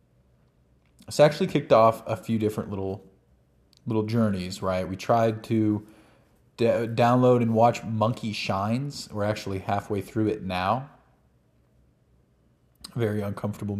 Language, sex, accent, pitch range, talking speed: English, male, American, 95-115 Hz, 115 wpm